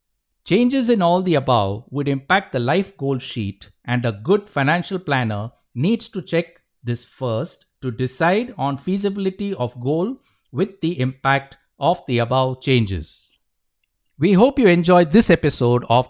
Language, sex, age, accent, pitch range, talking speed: English, male, 60-79, Indian, 120-180 Hz, 155 wpm